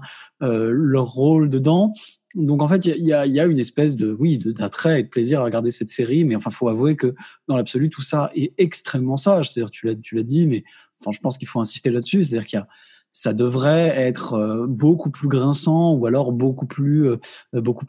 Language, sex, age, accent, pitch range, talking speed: French, male, 20-39, French, 120-160 Hz, 225 wpm